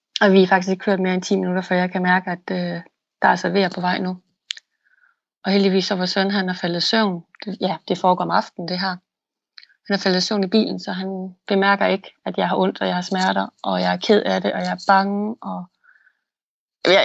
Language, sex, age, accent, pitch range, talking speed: Danish, female, 30-49, native, 185-220 Hz, 250 wpm